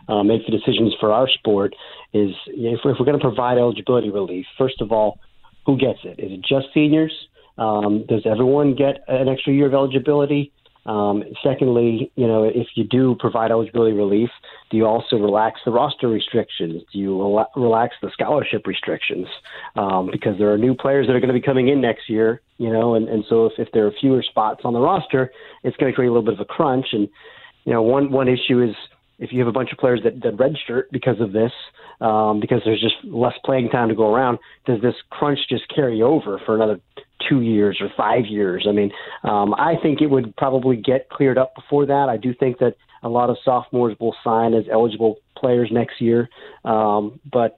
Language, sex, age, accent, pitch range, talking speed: English, male, 40-59, American, 110-130 Hz, 215 wpm